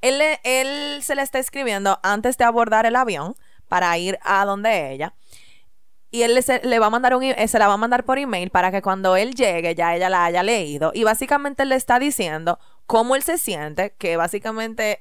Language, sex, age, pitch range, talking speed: Spanish, female, 20-39, 190-250 Hz, 215 wpm